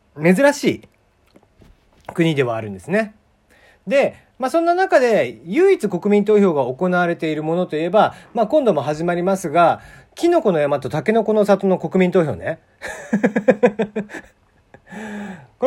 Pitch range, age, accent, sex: 165-255 Hz, 40-59, native, male